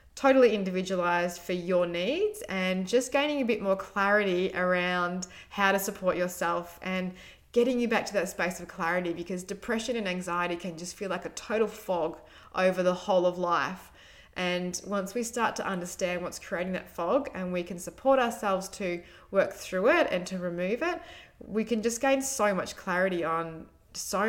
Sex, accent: female, Australian